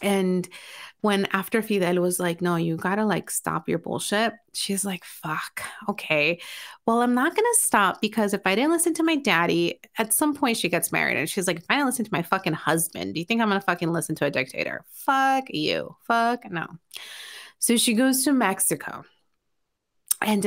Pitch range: 180-235 Hz